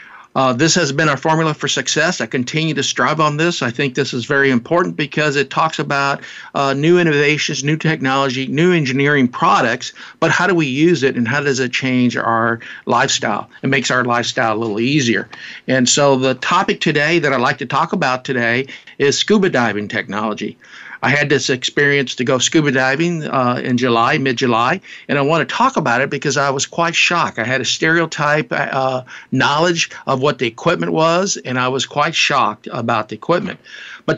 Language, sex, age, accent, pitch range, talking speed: English, male, 50-69, American, 125-160 Hz, 200 wpm